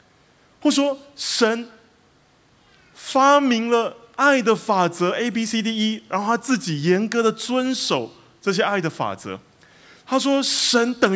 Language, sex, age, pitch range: Chinese, male, 30-49, 140-235 Hz